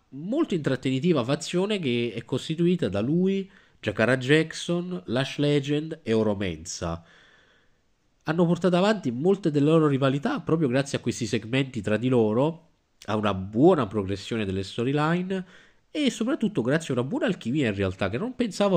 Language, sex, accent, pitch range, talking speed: Italian, male, native, 100-145 Hz, 150 wpm